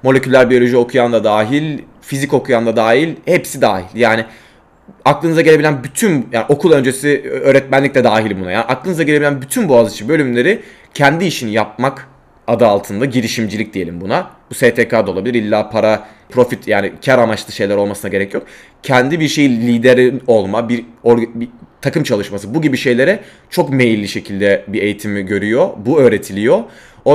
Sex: male